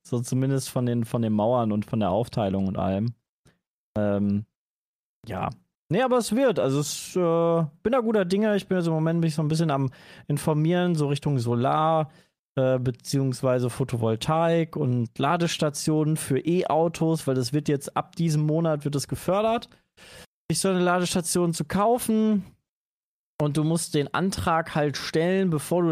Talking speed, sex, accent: 165 wpm, male, German